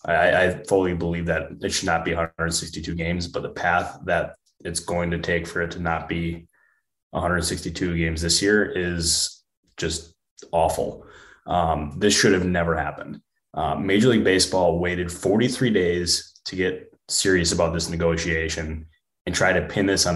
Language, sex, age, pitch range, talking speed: English, male, 20-39, 85-95 Hz, 165 wpm